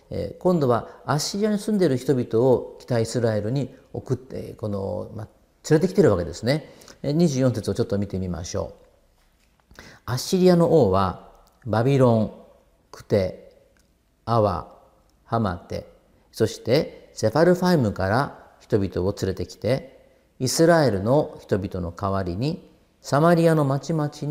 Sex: male